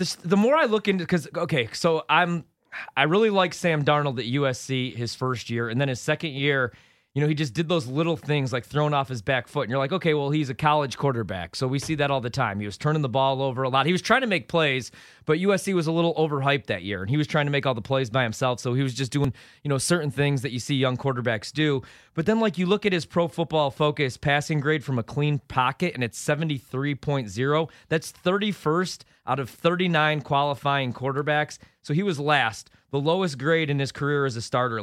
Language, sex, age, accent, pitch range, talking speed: English, male, 30-49, American, 130-160 Hz, 245 wpm